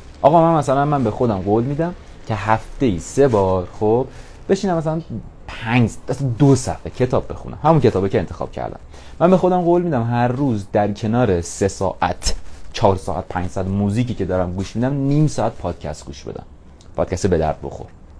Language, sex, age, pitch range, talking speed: English, male, 30-49, 90-135 Hz, 185 wpm